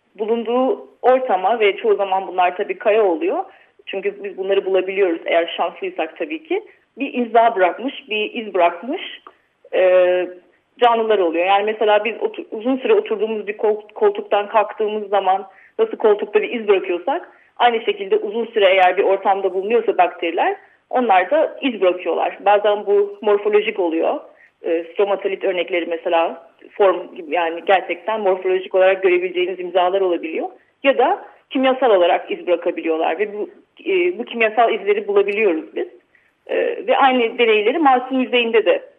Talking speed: 135 wpm